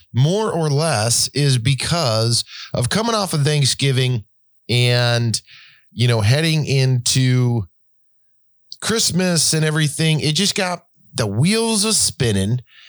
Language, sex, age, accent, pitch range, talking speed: English, male, 40-59, American, 105-150 Hz, 115 wpm